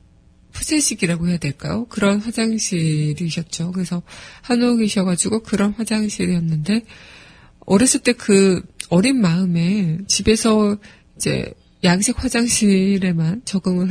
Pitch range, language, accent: 175-215 Hz, Korean, native